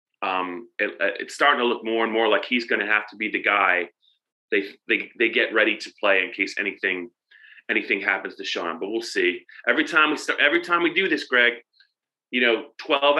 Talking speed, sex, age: 215 wpm, male, 30-49